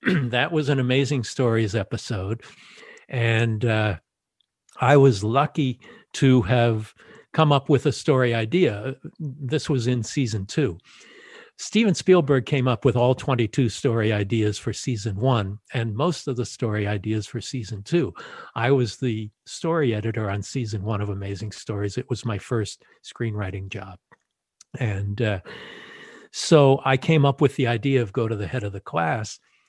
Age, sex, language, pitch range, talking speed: 50-69, male, English, 110-140 Hz, 160 wpm